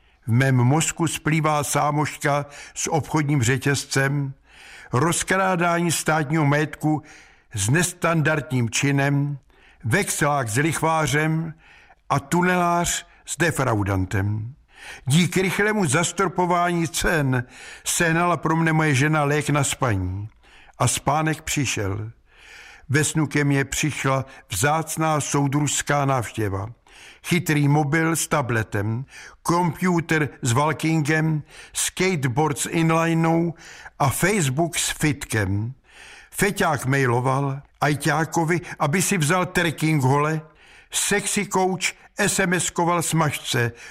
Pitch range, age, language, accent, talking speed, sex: 140-170 Hz, 60-79, Czech, native, 95 wpm, male